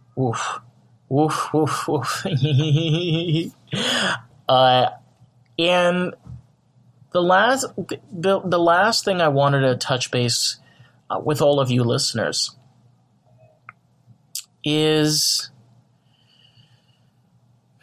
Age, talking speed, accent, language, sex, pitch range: 30-49, 80 wpm, American, English, male, 120-140 Hz